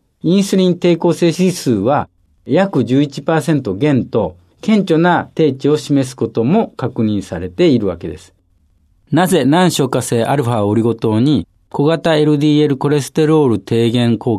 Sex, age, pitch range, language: male, 50-69, 105-155 Hz, Japanese